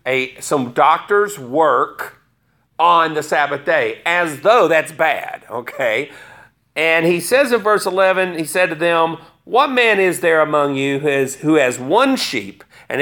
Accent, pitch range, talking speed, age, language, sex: American, 150-205 Hz, 155 wpm, 50-69, English, male